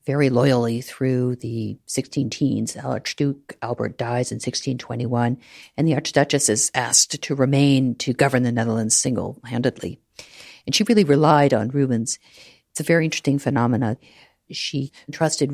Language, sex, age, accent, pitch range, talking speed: English, female, 50-69, American, 120-150 Hz, 135 wpm